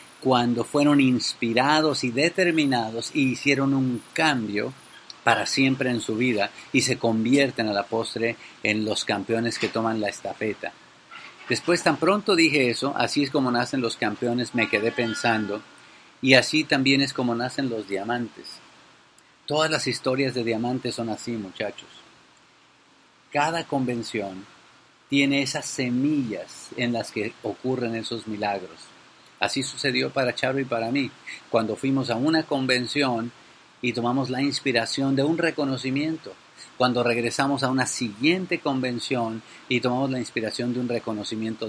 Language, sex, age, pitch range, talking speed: English, male, 50-69, 115-140 Hz, 145 wpm